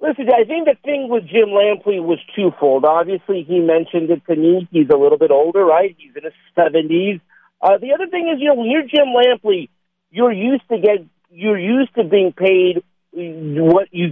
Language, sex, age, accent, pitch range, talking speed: English, male, 50-69, American, 180-260 Hz, 205 wpm